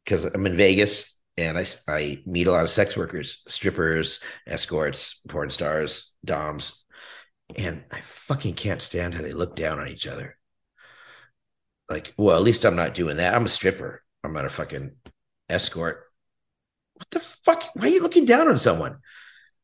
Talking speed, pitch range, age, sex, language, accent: 170 wpm, 90-125 Hz, 50-69, male, English, American